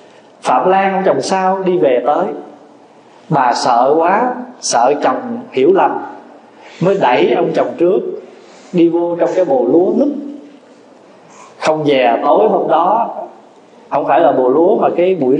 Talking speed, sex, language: 155 wpm, male, Vietnamese